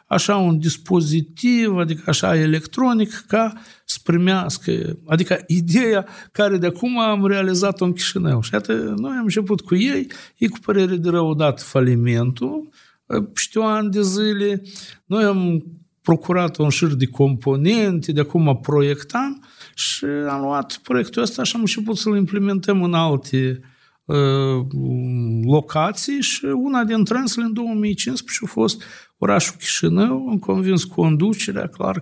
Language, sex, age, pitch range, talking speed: Romanian, male, 60-79, 150-200 Hz, 140 wpm